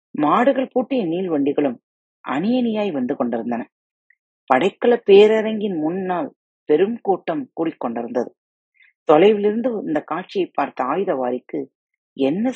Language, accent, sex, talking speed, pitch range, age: Tamil, native, female, 95 wpm, 155-250 Hz, 30-49